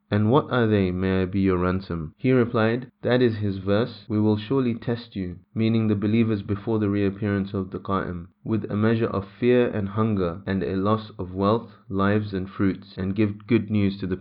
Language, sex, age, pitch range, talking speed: English, male, 20-39, 100-110 Hz, 210 wpm